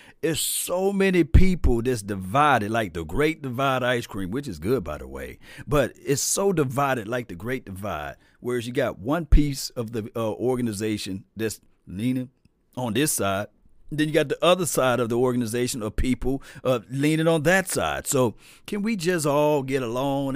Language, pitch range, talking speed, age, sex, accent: English, 110-150 Hz, 185 wpm, 40-59, male, American